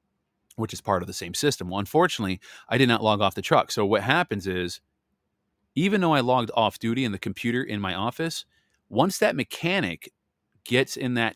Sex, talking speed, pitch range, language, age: male, 200 wpm, 95-115 Hz, English, 30-49